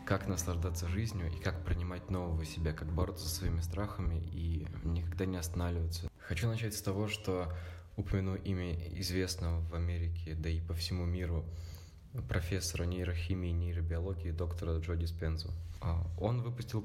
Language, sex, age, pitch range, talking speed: Russian, male, 20-39, 85-95 Hz, 145 wpm